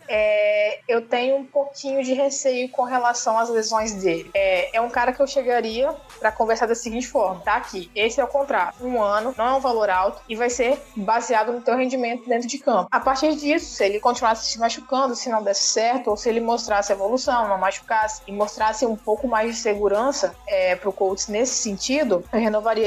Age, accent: 20-39, Brazilian